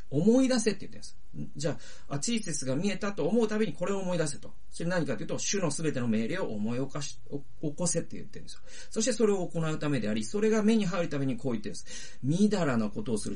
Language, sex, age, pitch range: Japanese, male, 40-59, 115-165 Hz